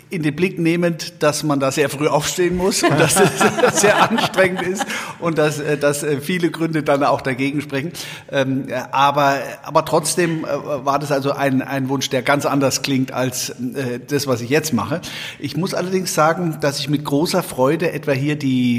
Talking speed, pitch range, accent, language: 180 wpm, 135-160 Hz, German, German